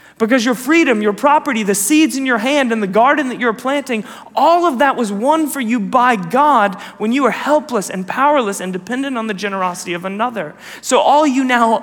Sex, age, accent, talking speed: male, 30-49, American, 215 wpm